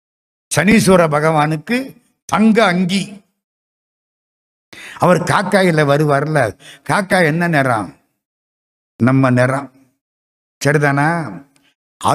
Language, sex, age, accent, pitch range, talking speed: Tamil, male, 60-79, native, 130-195 Hz, 70 wpm